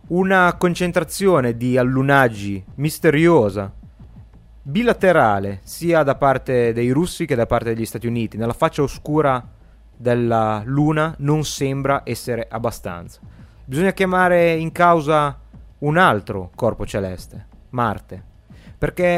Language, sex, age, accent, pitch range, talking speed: Italian, male, 30-49, native, 115-160 Hz, 115 wpm